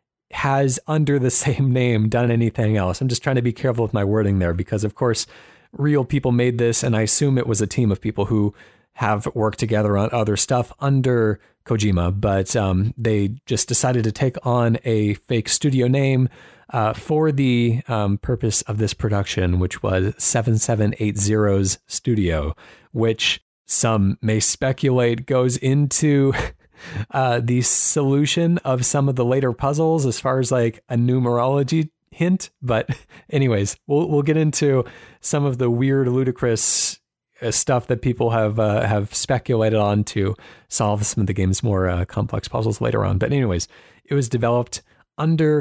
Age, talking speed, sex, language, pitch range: 30-49, 165 wpm, male, English, 105-130 Hz